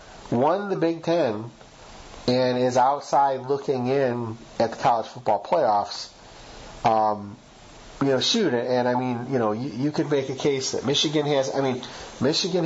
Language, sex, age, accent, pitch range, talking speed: English, male, 30-49, American, 120-140 Hz, 170 wpm